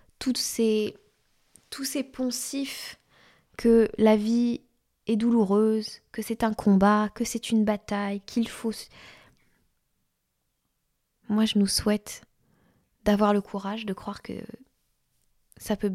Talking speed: 115 wpm